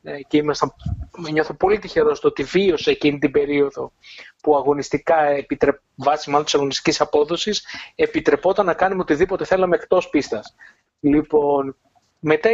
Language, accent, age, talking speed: Greek, native, 30-49, 130 wpm